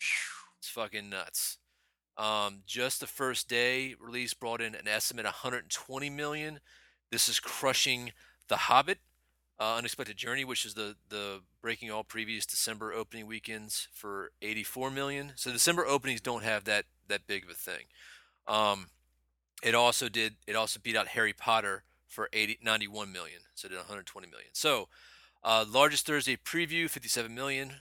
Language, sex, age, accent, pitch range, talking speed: English, male, 30-49, American, 110-130 Hz, 160 wpm